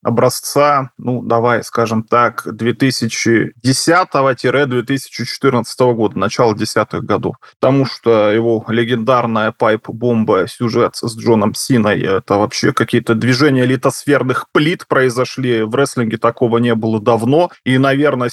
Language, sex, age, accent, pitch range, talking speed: Russian, male, 20-39, native, 115-130 Hz, 110 wpm